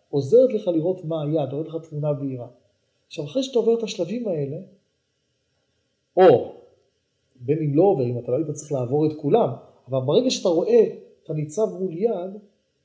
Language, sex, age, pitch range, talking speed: Hebrew, male, 40-59, 135-195 Hz, 170 wpm